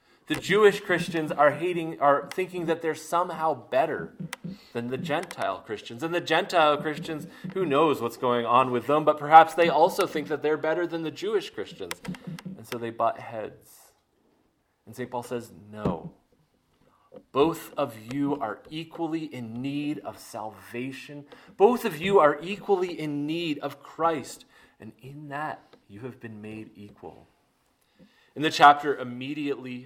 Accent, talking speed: American, 155 wpm